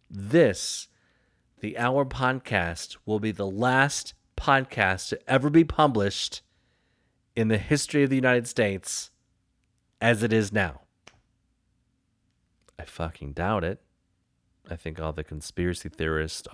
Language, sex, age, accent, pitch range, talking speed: English, male, 30-49, American, 85-115 Hz, 125 wpm